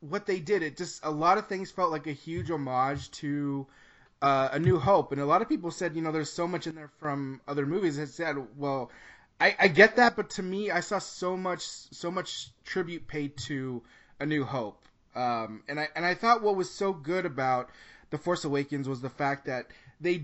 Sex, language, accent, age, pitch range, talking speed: male, English, American, 20-39, 135-175 Hz, 225 wpm